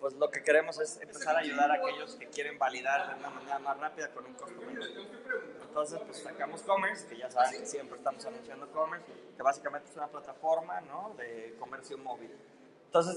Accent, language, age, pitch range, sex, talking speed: Mexican, Spanish, 20-39, 150-215 Hz, male, 200 wpm